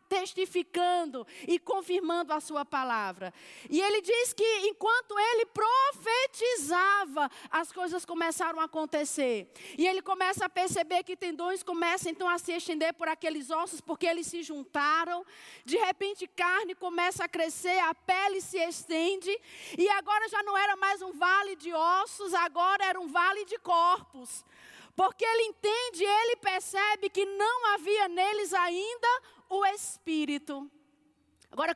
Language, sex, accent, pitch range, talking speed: Portuguese, female, Brazilian, 335-425 Hz, 145 wpm